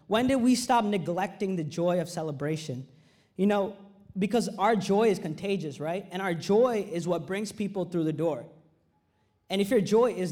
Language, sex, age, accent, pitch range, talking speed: English, male, 20-39, American, 180-225 Hz, 185 wpm